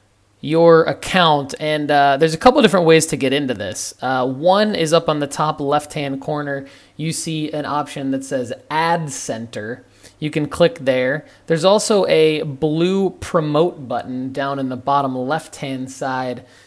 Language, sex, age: English, male, 20-39